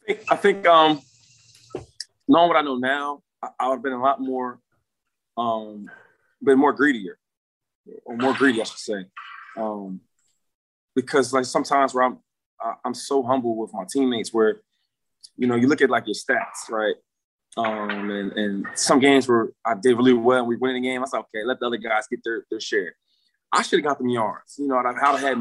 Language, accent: English, American